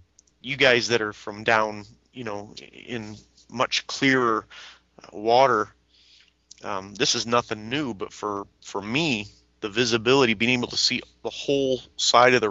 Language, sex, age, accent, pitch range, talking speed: English, male, 30-49, American, 100-120 Hz, 155 wpm